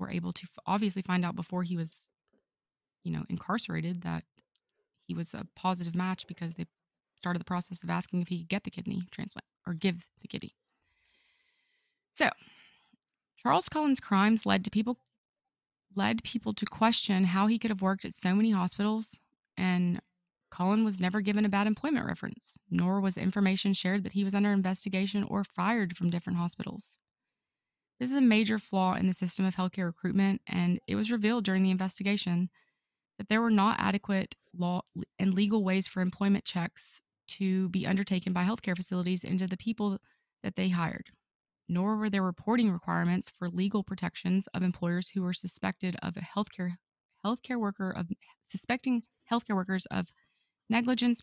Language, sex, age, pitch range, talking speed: English, female, 20-39, 180-210 Hz, 170 wpm